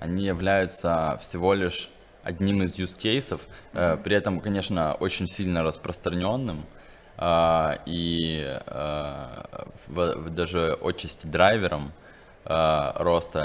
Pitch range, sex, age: 80-95 Hz, male, 20-39